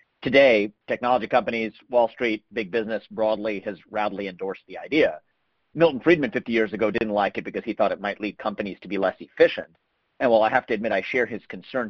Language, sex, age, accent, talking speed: English, male, 40-59, American, 210 wpm